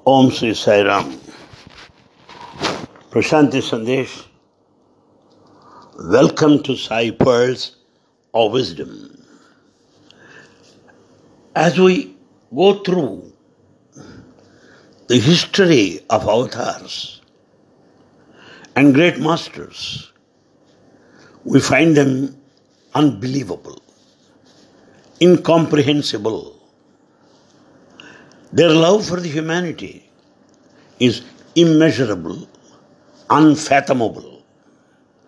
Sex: male